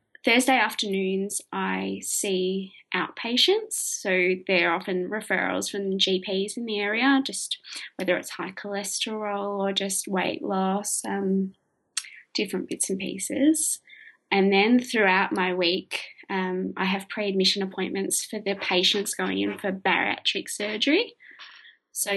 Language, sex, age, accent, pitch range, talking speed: English, female, 20-39, Australian, 180-220 Hz, 125 wpm